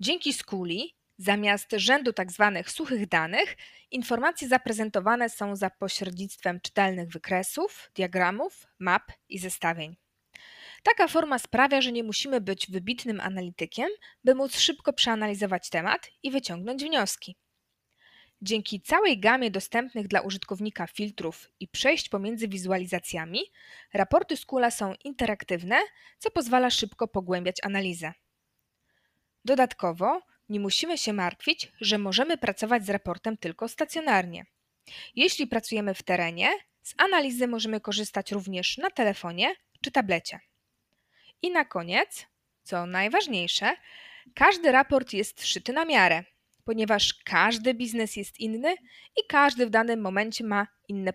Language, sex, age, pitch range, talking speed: Polish, female, 20-39, 190-265 Hz, 120 wpm